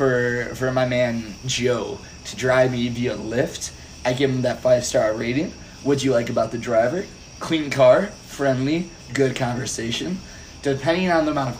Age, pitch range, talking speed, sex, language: 20-39, 115-140 Hz, 175 wpm, male, English